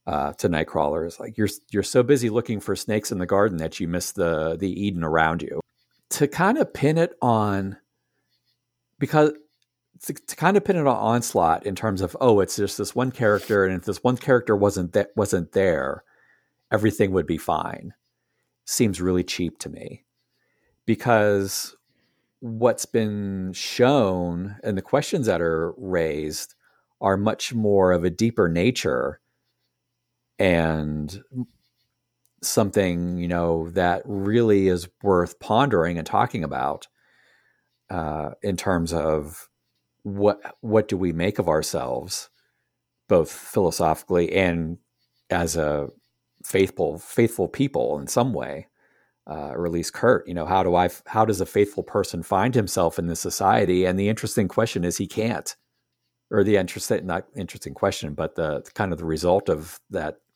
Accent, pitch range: American, 85-115 Hz